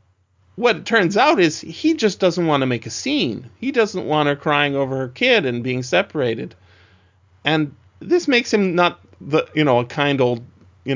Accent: American